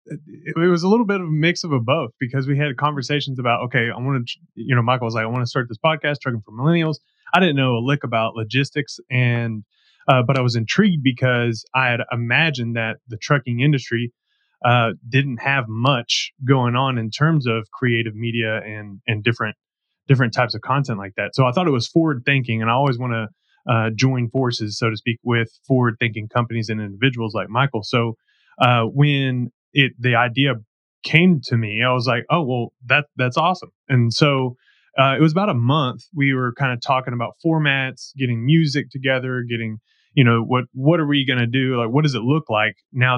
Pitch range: 115-140 Hz